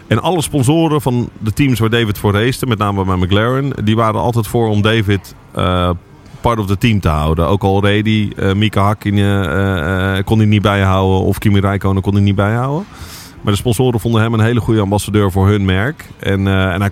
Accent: Dutch